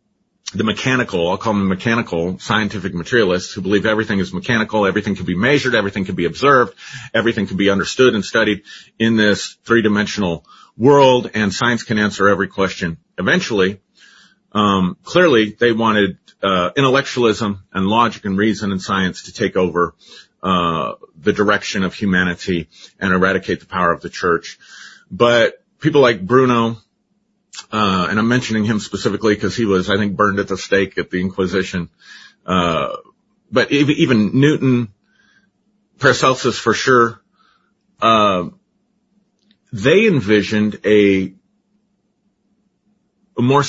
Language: English